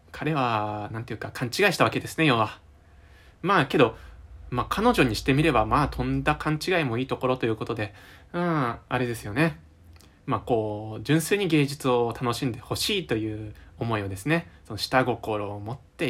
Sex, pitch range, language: male, 95-135 Hz, Japanese